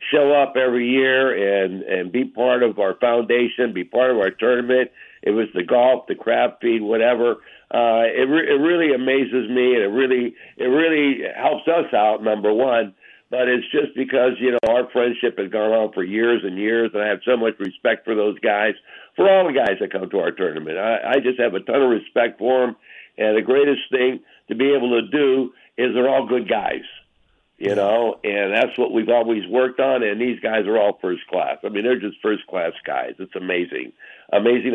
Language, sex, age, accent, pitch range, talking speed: English, male, 60-79, American, 110-130 Hz, 215 wpm